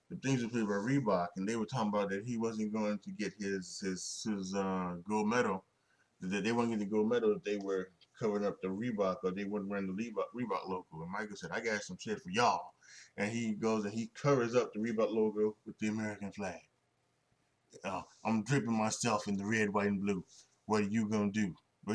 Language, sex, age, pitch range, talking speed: English, male, 20-39, 100-125 Hz, 235 wpm